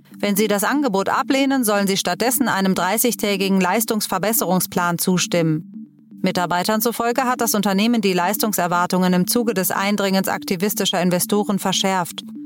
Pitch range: 185-225 Hz